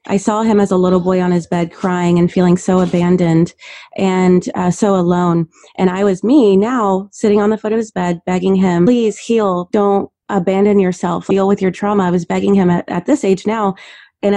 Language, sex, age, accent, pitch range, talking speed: English, female, 30-49, American, 175-205 Hz, 215 wpm